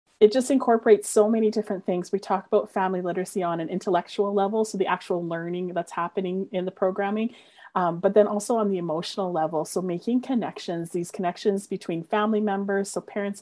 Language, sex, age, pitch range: English, female, 30-49, 170-200 Hz